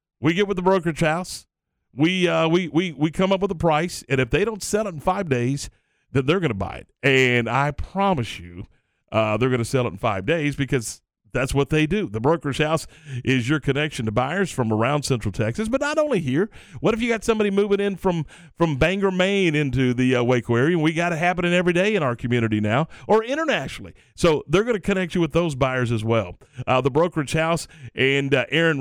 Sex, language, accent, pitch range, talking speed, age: male, English, American, 125-170 Hz, 230 wpm, 40-59